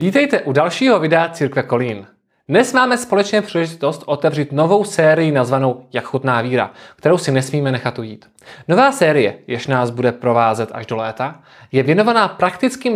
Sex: male